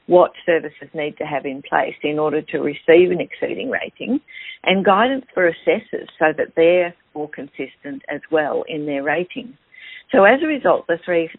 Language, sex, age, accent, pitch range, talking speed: English, female, 50-69, Australian, 150-180 Hz, 180 wpm